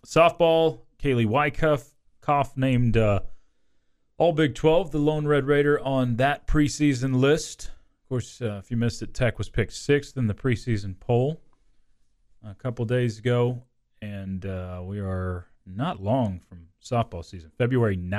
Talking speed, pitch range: 150 wpm, 95-130 Hz